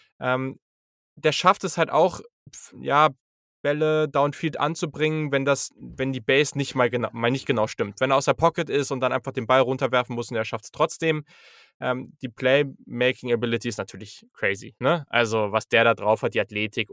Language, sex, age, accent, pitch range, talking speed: German, male, 10-29, German, 115-140 Hz, 195 wpm